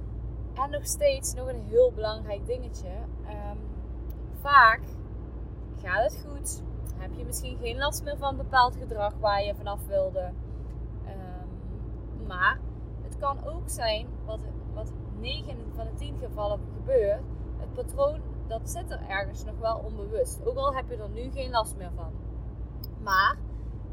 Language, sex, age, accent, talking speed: Dutch, female, 20-39, Dutch, 145 wpm